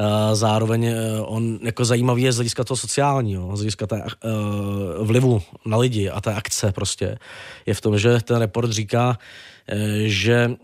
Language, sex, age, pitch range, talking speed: Czech, male, 20-39, 105-120 Hz, 150 wpm